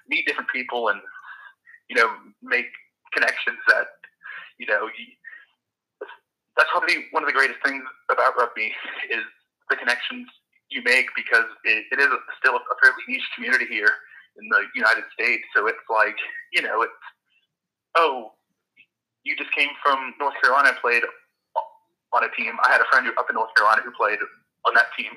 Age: 20-39